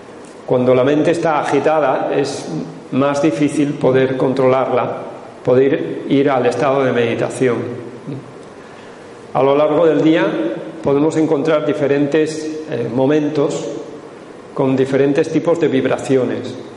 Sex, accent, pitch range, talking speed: male, Spanish, 125-150 Hz, 110 wpm